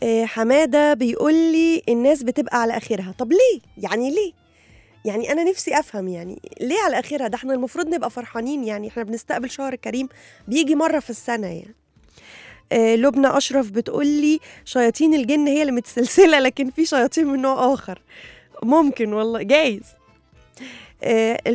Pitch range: 215-275 Hz